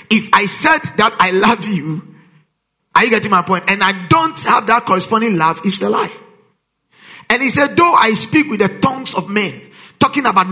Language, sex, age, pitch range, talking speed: English, male, 50-69, 185-235 Hz, 200 wpm